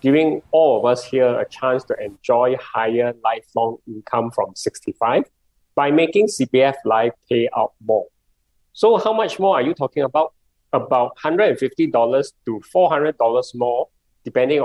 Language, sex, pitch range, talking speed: English, male, 120-160 Hz, 145 wpm